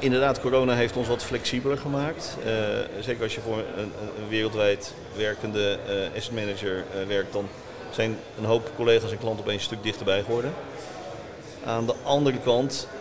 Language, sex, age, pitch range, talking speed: Dutch, male, 40-59, 110-130 Hz, 170 wpm